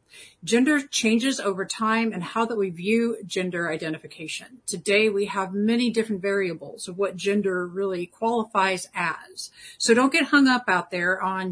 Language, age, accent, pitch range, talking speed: English, 50-69, American, 185-225 Hz, 160 wpm